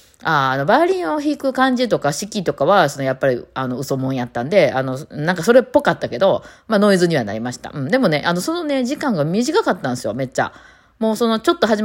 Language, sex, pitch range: Japanese, female, 130-195 Hz